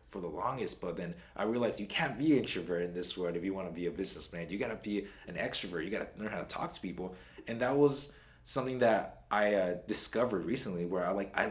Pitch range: 90-115 Hz